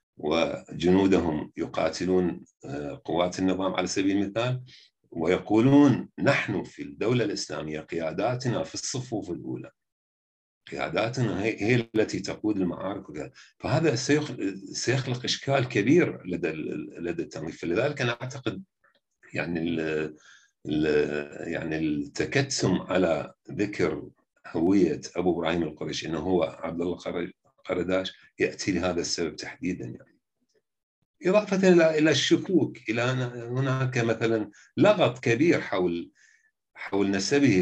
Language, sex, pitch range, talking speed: Arabic, male, 80-125 Hz, 95 wpm